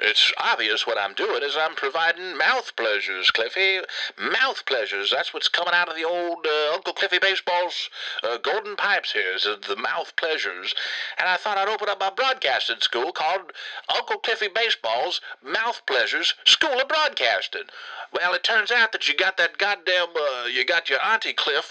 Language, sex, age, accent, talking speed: English, male, 50-69, American, 170 wpm